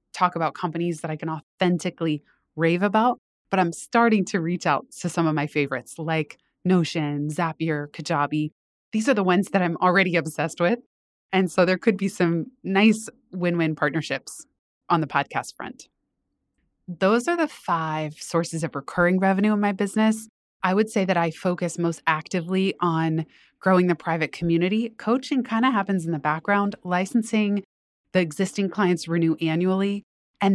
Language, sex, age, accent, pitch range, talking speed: English, female, 20-39, American, 160-195 Hz, 165 wpm